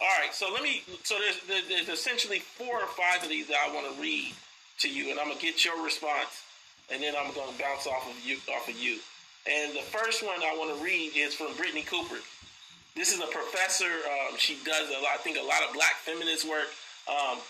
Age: 30-49